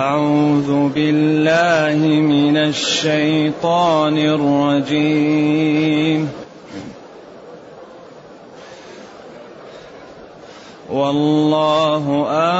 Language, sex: Arabic, male